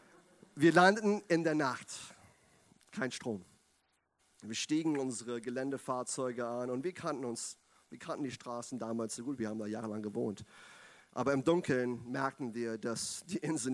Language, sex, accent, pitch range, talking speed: German, male, German, 110-145 Hz, 155 wpm